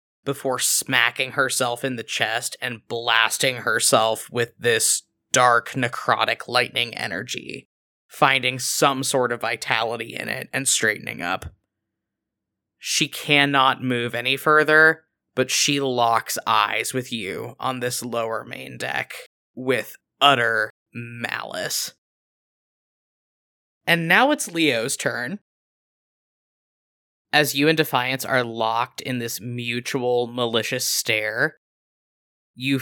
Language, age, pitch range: English, 20-39, 120-135 Hz